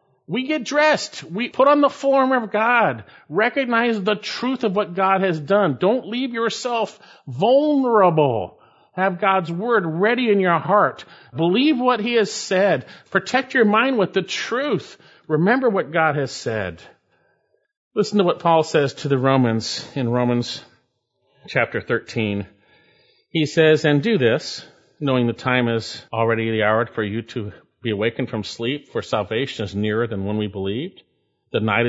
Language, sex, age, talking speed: English, male, 50-69, 160 wpm